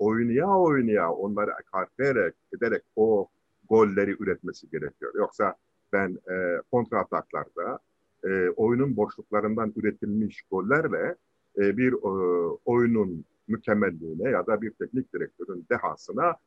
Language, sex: Turkish, male